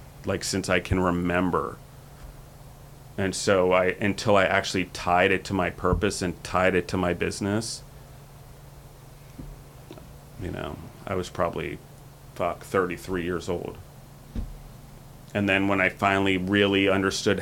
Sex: male